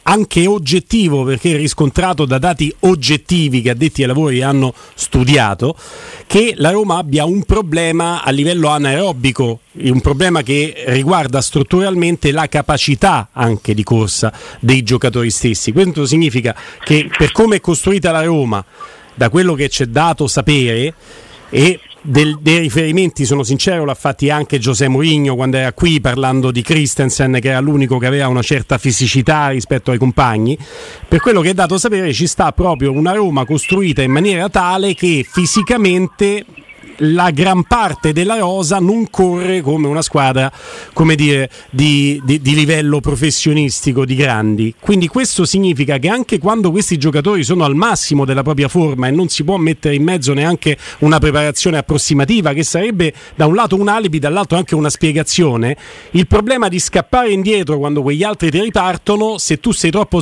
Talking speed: 165 wpm